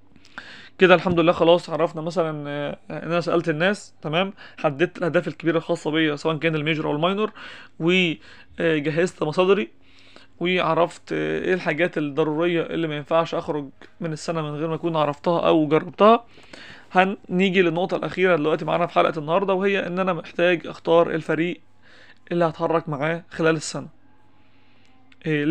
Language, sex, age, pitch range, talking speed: Arabic, male, 20-39, 155-180 Hz, 140 wpm